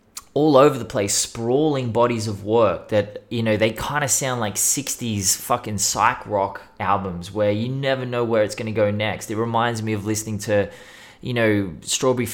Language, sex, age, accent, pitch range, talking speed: English, male, 20-39, Australian, 105-130 Hz, 195 wpm